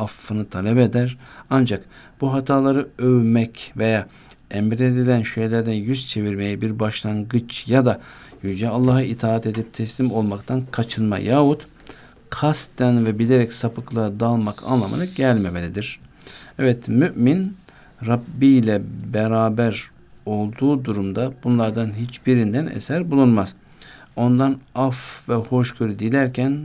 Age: 60-79